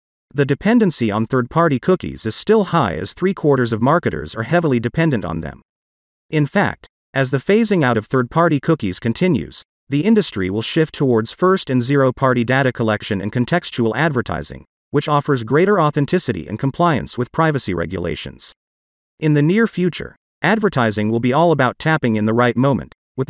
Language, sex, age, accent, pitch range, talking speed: English, male, 40-59, American, 115-160 Hz, 165 wpm